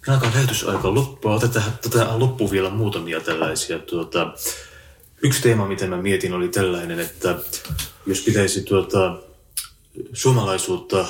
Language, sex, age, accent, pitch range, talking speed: Finnish, male, 30-49, native, 85-100 Hz, 120 wpm